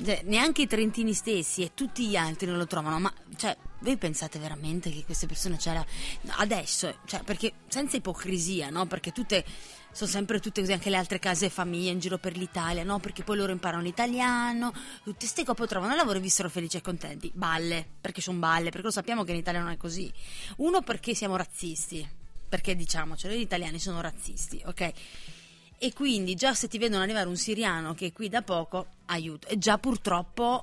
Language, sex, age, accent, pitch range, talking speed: Italian, female, 20-39, native, 175-220 Hz, 205 wpm